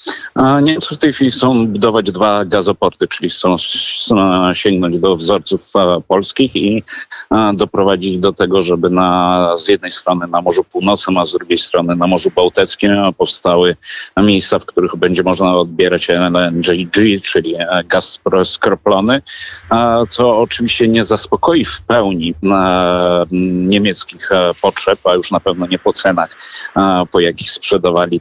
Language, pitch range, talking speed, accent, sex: Polish, 90-110 Hz, 130 wpm, native, male